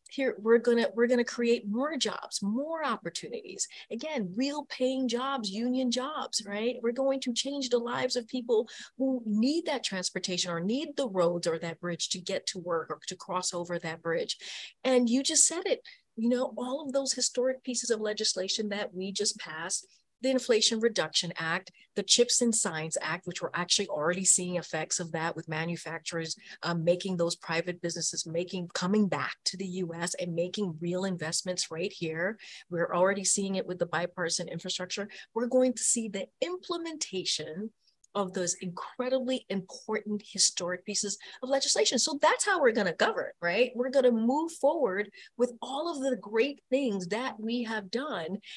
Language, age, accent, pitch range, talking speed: English, 40-59, American, 185-265 Hz, 180 wpm